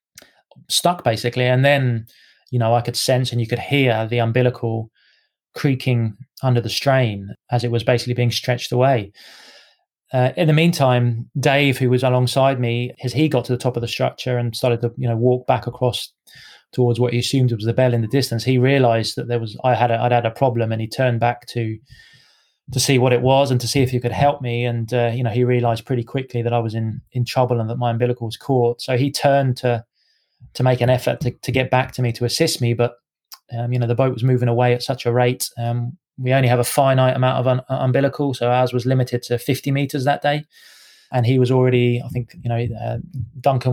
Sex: male